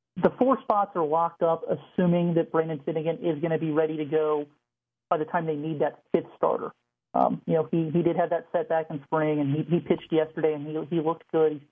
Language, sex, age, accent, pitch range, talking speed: English, male, 40-59, American, 155-185 Hz, 240 wpm